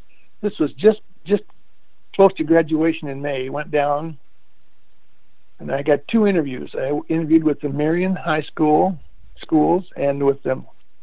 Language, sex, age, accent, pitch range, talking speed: English, male, 60-79, American, 145-170 Hz, 140 wpm